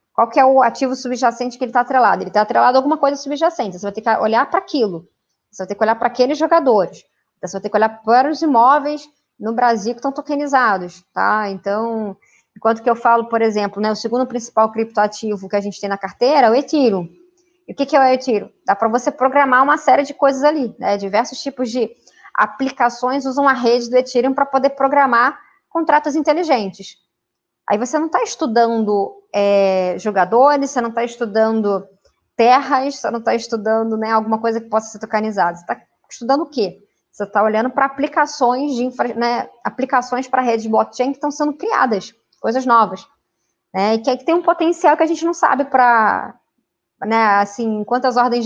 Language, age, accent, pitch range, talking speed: Portuguese, 20-39, Brazilian, 215-275 Hz, 195 wpm